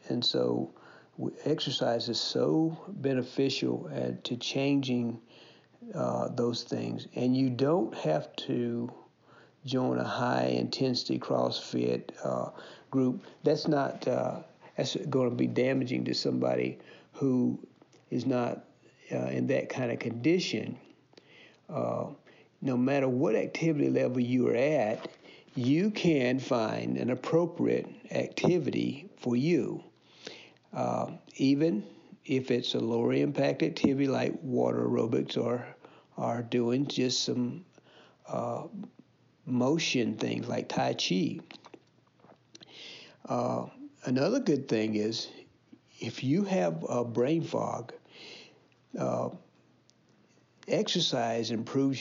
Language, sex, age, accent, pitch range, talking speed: English, male, 50-69, American, 110-135 Hz, 110 wpm